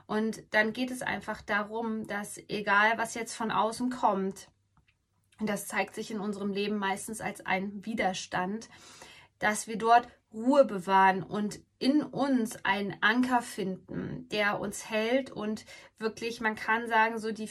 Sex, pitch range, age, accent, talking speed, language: female, 200-240 Hz, 20-39, German, 155 wpm, German